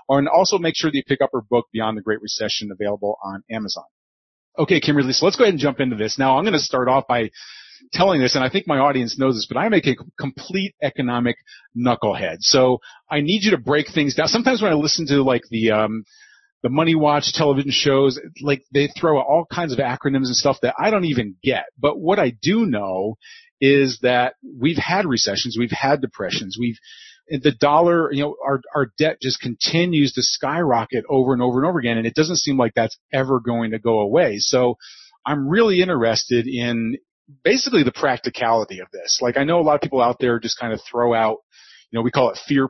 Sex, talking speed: male, 220 wpm